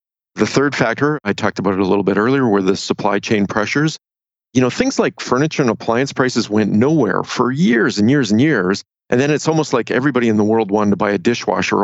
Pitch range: 105-125 Hz